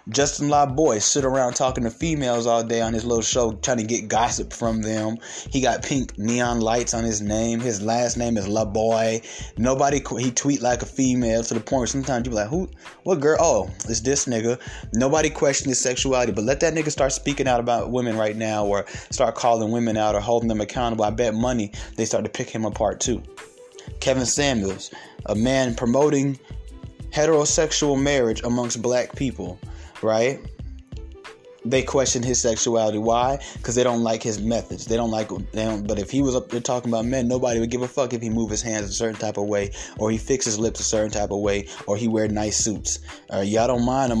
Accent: American